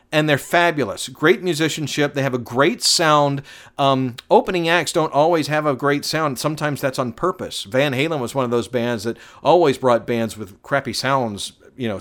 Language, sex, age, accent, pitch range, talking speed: English, male, 50-69, American, 115-145 Hz, 195 wpm